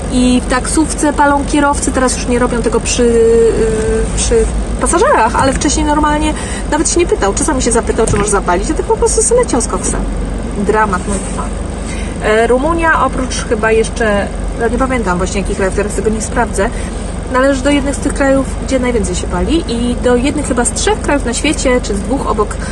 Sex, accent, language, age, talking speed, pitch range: female, native, Polish, 30-49, 195 wpm, 180-255 Hz